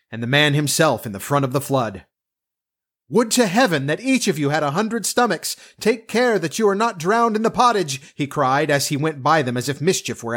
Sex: male